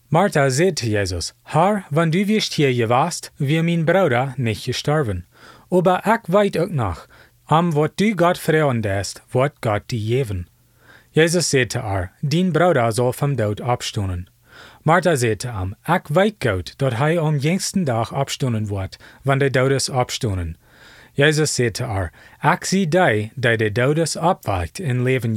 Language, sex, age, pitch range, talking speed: German, male, 30-49, 110-165 Hz, 155 wpm